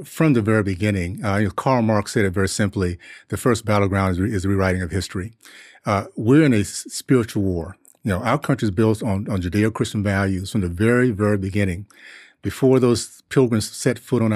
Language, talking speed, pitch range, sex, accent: English, 215 wpm, 100-120 Hz, male, American